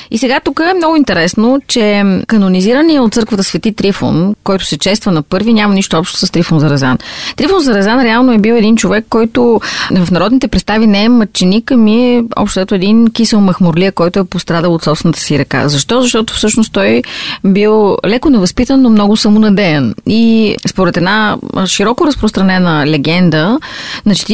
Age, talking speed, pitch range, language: 30-49, 175 wpm, 180-230 Hz, Bulgarian